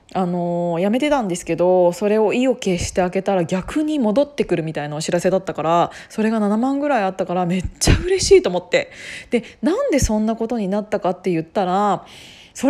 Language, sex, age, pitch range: Japanese, female, 20-39, 185-265 Hz